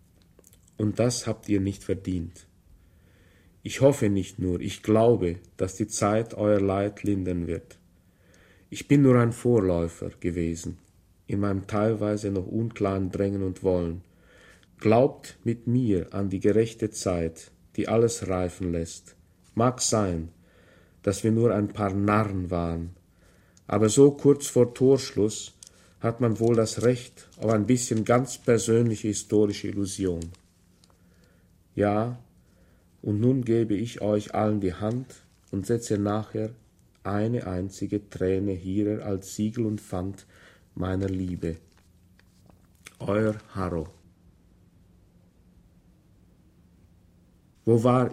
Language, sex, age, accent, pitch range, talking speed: German, male, 50-69, German, 90-110 Hz, 120 wpm